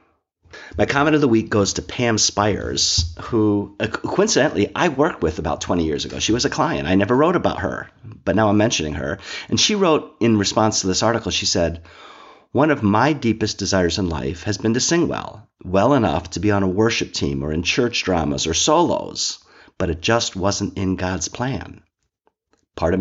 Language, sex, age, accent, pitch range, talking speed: English, male, 40-59, American, 90-115 Hz, 205 wpm